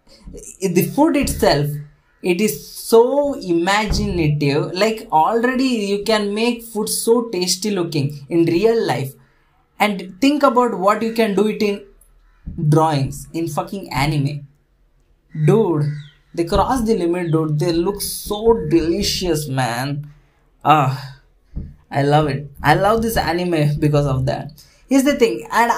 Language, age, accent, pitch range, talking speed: English, 20-39, Indian, 155-230 Hz, 135 wpm